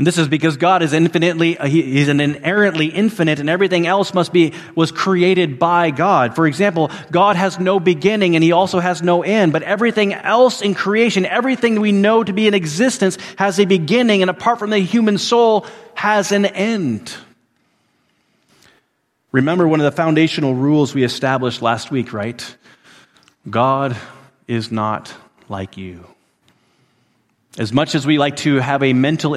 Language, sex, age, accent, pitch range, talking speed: English, male, 30-49, American, 125-180 Hz, 165 wpm